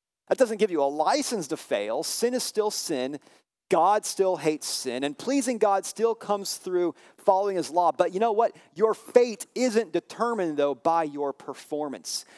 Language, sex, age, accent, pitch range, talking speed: English, male, 40-59, American, 145-230 Hz, 180 wpm